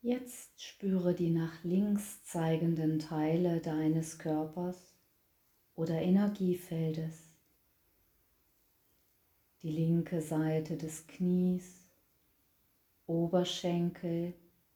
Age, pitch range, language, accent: 30-49, 155-180 Hz, German, German